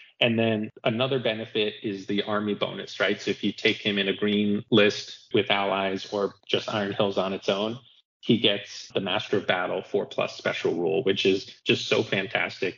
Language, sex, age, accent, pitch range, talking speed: English, male, 20-39, American, 95-110 Hz, 195 wpm